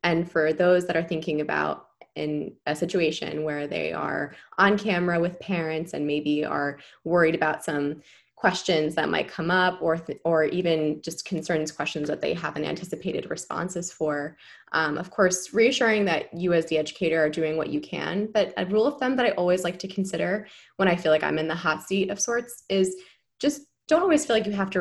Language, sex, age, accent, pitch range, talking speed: English, female, 20-39, American, 155-185 Hz, 210 wpm